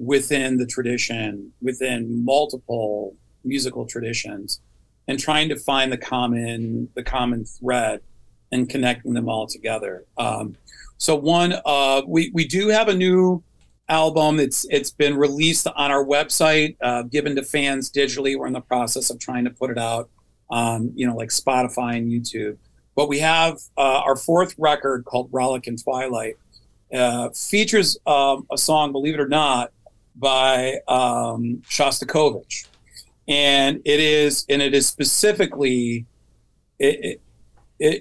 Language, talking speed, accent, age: English, 145 wpm, American, 40-59